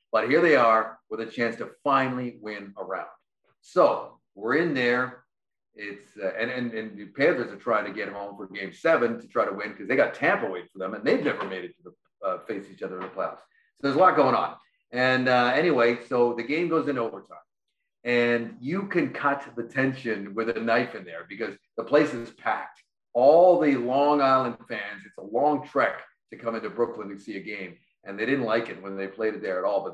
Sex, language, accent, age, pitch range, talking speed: male, English, American, 40-59, 110-130 Hz, 235 wpm